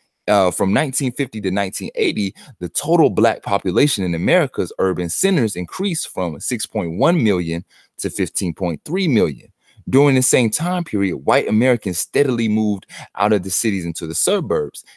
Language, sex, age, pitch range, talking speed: English, male, 30-49, 90-120 Hz, 145 wpm